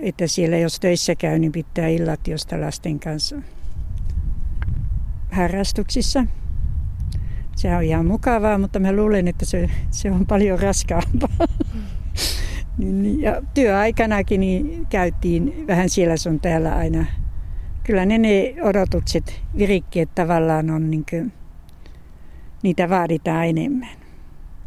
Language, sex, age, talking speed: Finnish, female, 60-79, 115 wpm